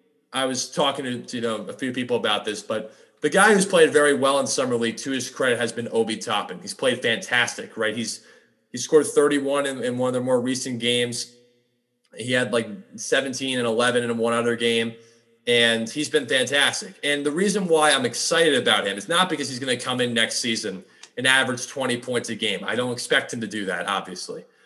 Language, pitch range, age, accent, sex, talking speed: English, 115-140 Hz, 30-49, American, male, 220 wpm